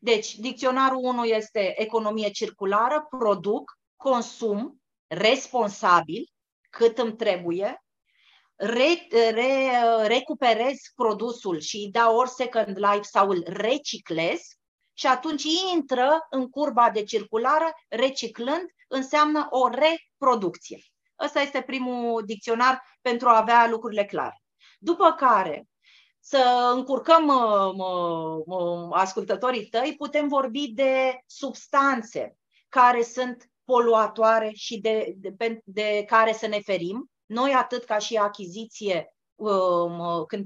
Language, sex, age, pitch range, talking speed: Romanian, female, 30-49, 205-270 Hz, 105 wpm